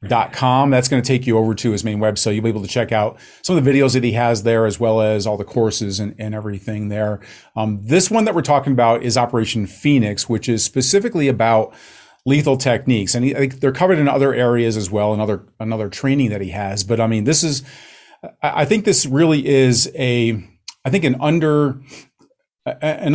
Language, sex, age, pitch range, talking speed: English, male, 40-59, 110-135 Hz, 225 wpm